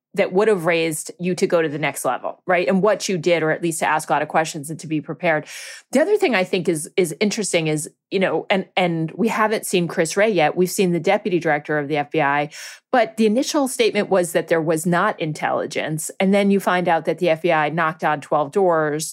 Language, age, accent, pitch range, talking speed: English, 30-49, American, 155-195 Hz, 245 wpm